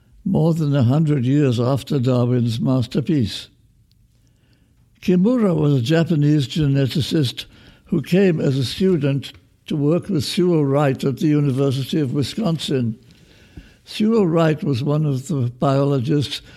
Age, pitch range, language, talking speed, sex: 60-79, 130-160 Hz, English, 125 wpm, male